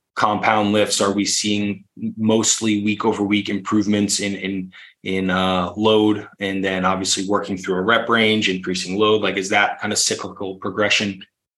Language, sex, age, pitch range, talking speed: English, male, 20-39, 100-110 Hz, 165 wpm